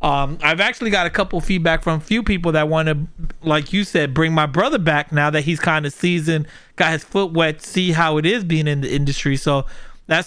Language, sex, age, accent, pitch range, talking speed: English, male, 30-49, American, 155-185 Hz, 245 wpm